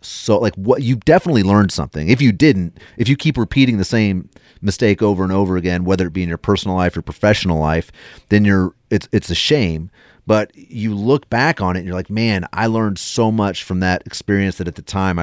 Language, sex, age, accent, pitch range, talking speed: English, male, 30-49, American, 90-110 Hz, 230 wpm